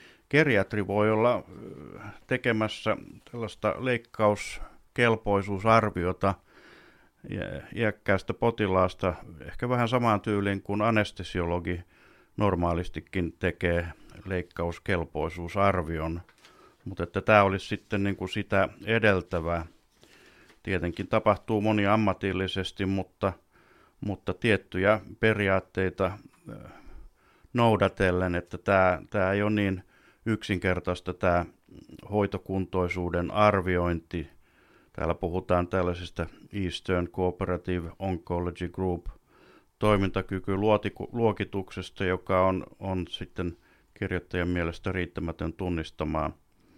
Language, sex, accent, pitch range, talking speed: Finnish, male, native, 90-105 Hz, 80 wpm